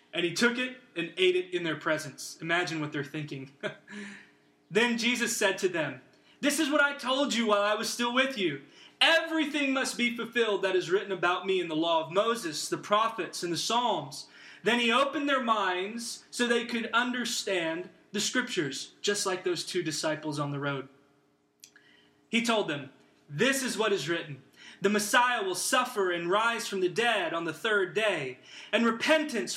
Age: 20-39